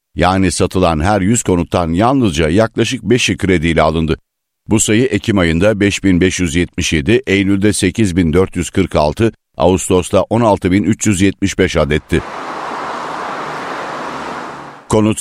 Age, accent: 60-79, native